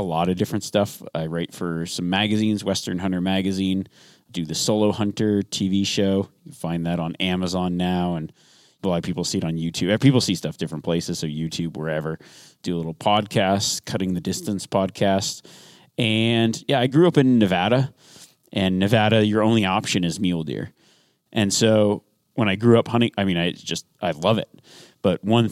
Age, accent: 30-49, American